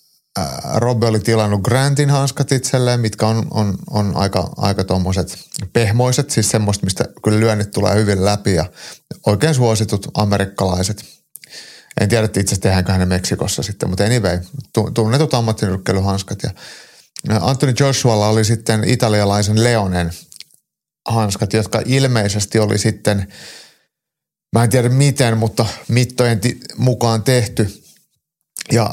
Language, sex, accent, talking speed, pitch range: Finnish, male, native, 120 wpm, 100-120 Hz